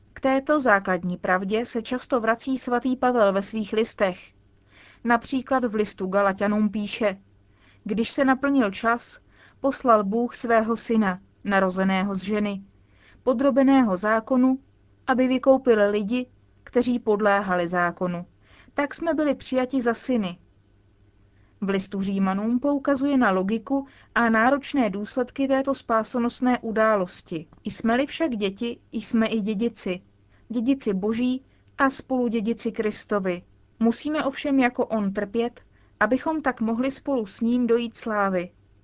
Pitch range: 195-250 Hz